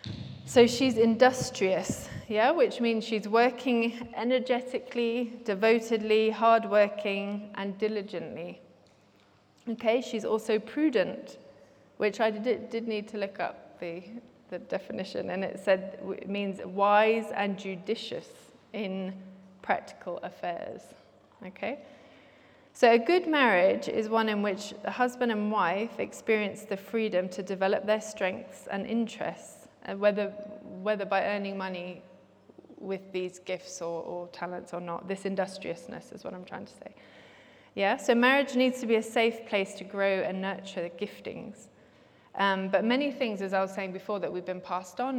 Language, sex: English, female